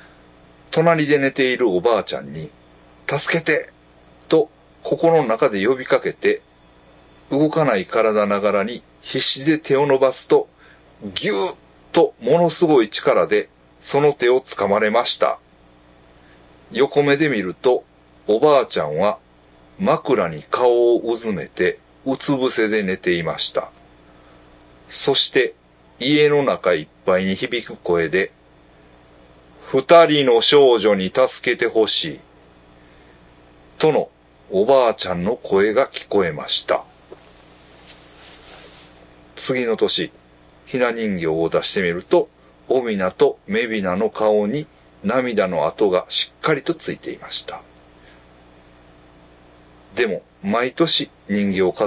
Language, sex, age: Japanese, male, 40-59